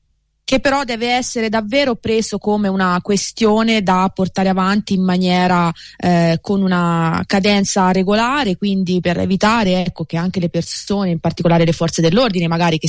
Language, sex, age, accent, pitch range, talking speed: Italian, female, 20-39, native, 170-195 Hz, 160 wpm